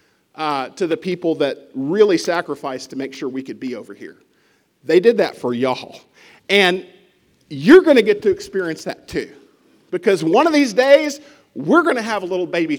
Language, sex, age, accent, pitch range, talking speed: English, male, 40-59, American, 170-235 Hz, 190 wpm